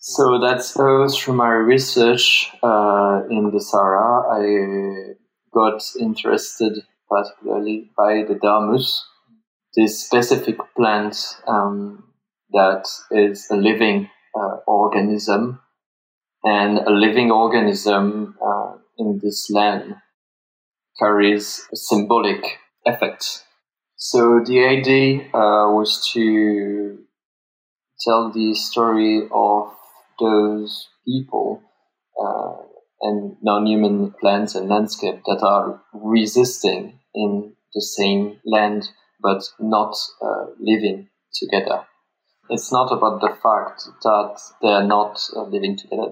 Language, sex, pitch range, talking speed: English, male, 105-115 Hz, 105 wpm